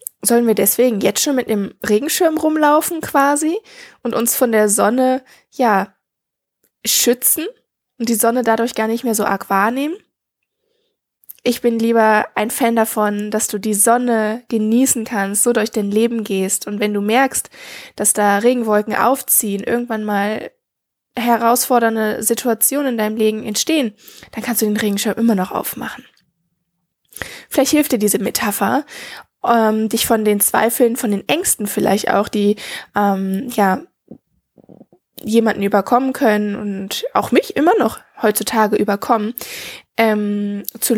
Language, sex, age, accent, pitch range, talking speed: German, female, 20-39, German, 210-245 Hz, 140 wpm